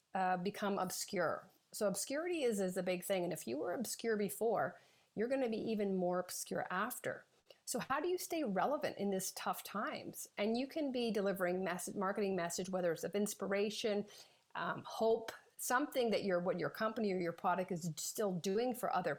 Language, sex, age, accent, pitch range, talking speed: English, female, 40-59, American, 185-235 Hz, 195 wpm